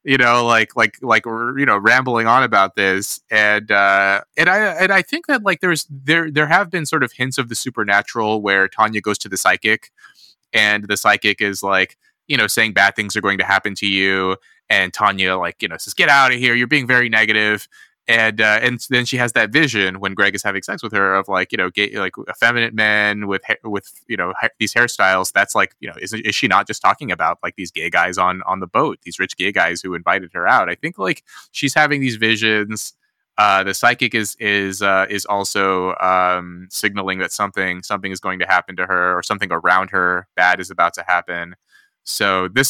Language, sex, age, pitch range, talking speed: English, male, 20-39, 95-120 Hz, 230 wpm